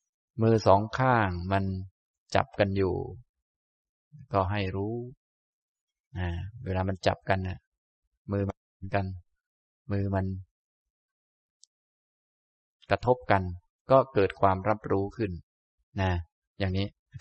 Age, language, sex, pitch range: 20-39, Thai, male, 95-115 Hz